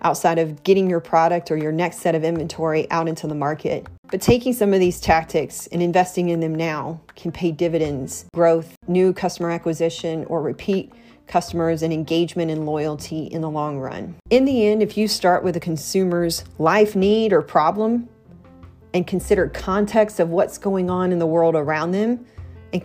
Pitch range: 160-195 Hz